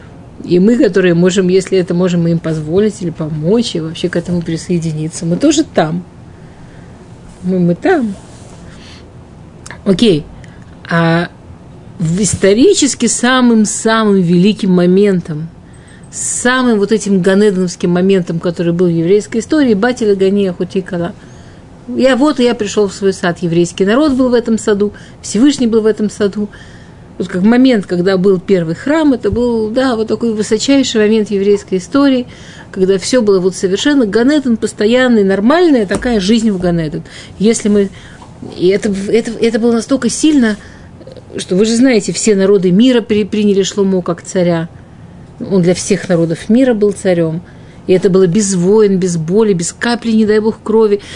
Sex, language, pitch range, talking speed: female, Russian, 185-230 Hz, 150 wpm